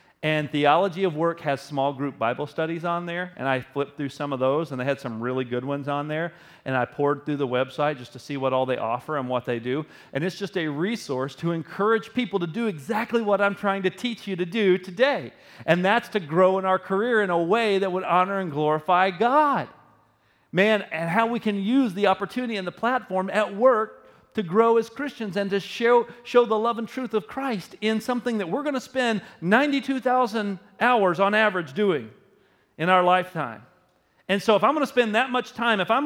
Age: 40-59